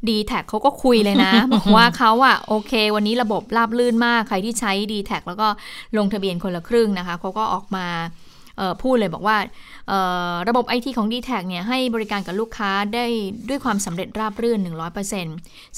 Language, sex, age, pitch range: Thai, female, 20-39, 185-225 Hz